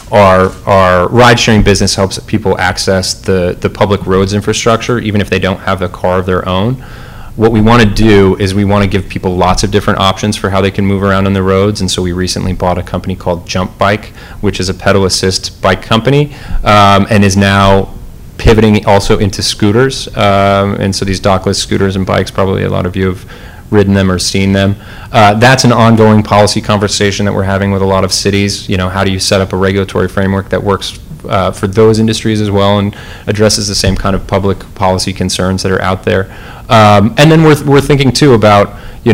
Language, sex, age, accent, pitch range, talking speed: English, male, 30-49, American, 95-110 Hz, 220 wpm